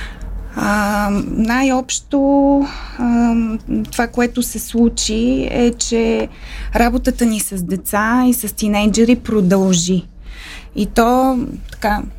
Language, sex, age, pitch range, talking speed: Bulgarian, female, 20-39, 195-235 Hz, 100 wpm